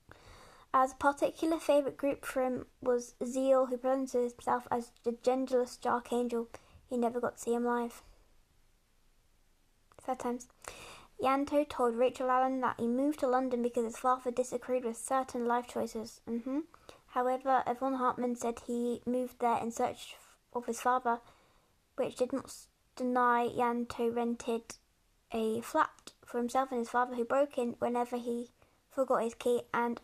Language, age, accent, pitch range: English, 10-29, British, 240-260 Hz